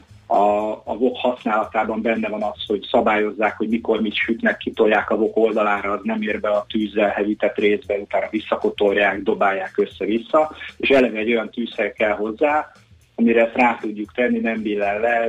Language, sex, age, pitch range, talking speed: Hungarian, male, 30-49, 105-120 Hz, 175 wpm